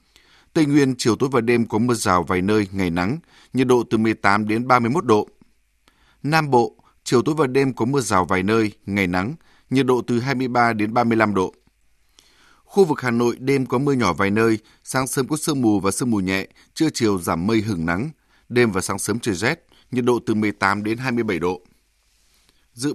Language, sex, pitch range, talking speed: Vietnamese, male, 105-130 Hz, 205 wpm